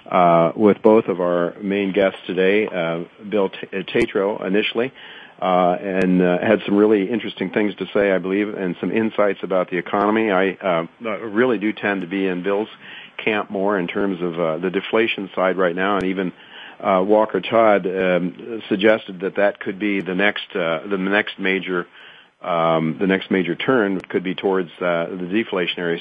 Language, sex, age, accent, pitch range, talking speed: English, male, 40-59, American, 90-105 Hz, 185 wpm